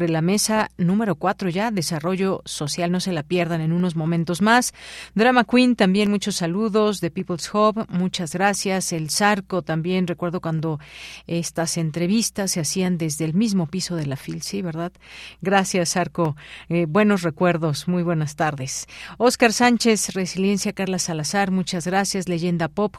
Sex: female